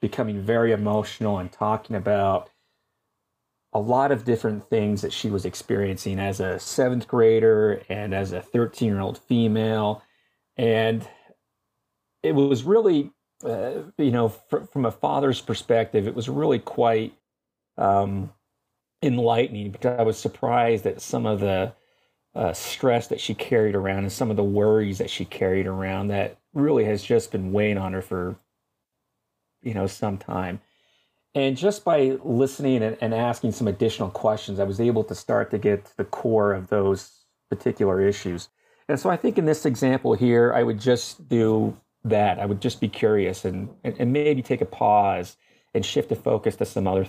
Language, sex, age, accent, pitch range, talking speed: English, male, 40-59, American, 100-120 Hz, 170 wpm